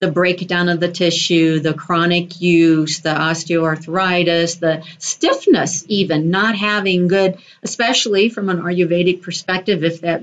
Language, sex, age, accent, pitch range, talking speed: English, female, 50-69, American, 165-195 Hz, 135 wpm